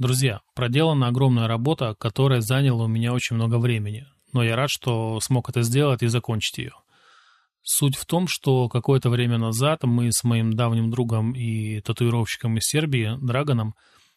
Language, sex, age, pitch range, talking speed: Russian, male, 20-39, 115-135 Hz, 160 wpm